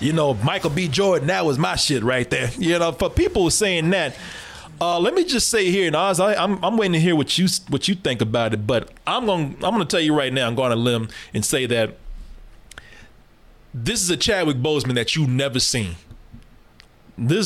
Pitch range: 125-175 Hz